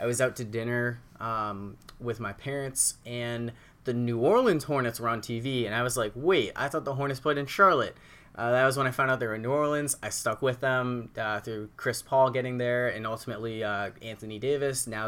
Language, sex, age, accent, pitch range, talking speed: English, male, 20-39, American, 120-150 Hz, 225 wpm